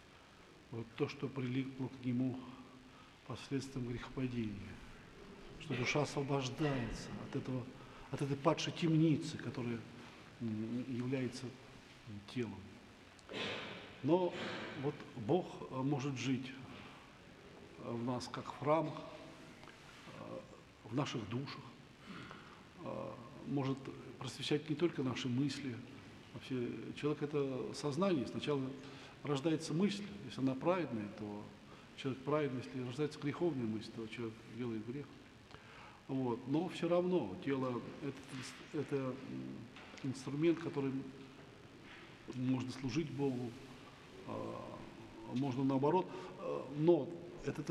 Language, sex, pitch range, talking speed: Russian, male, 120-145 Hz, 95 wpm